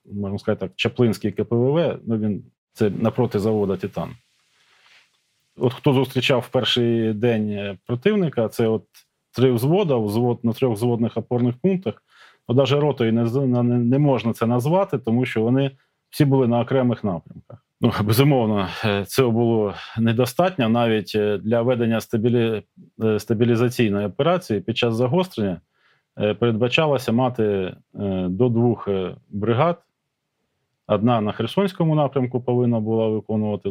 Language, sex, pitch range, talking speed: Ukrainian, male, 105-125 Hz, 120 wpm